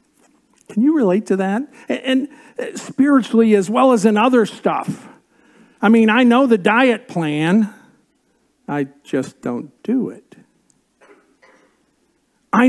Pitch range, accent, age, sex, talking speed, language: 150-245 Hz, American, 50-69, male, 125 wpm, English